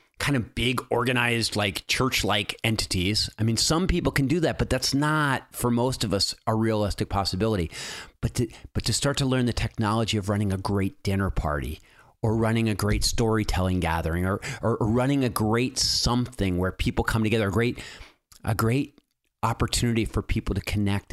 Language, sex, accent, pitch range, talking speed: English, male, American, 105-135 Hz, 185 wpm